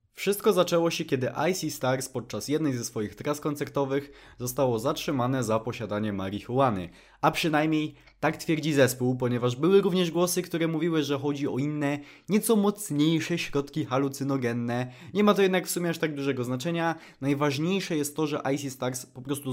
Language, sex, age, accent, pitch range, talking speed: Polish, male, 20-39, native, 125-160 Hz, 165 wpm